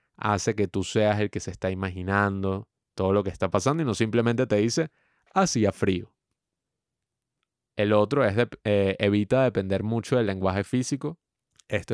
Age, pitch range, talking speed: 20-39, 95-115 Hz, 160 wpm